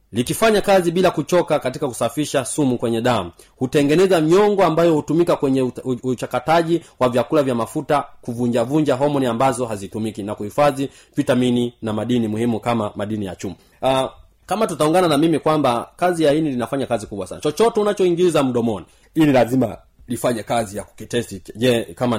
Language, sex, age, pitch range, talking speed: Swahili, male, 30-49, 115-155 Hz, 150 wpm